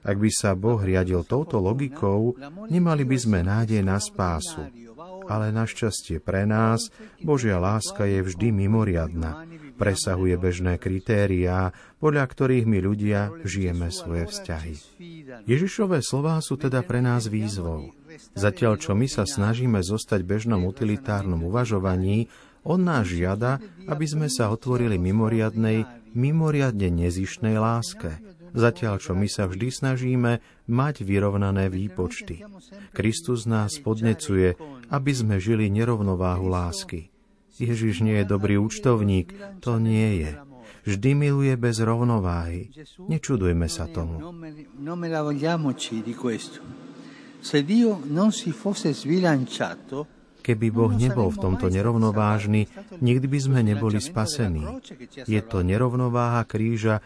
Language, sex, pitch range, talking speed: Slovak, male, 95-135 Hz, 115 wpm